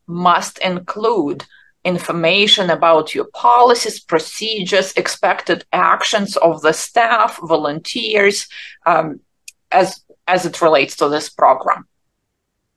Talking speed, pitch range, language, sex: 100 wpm, 165-200 Hz, English, female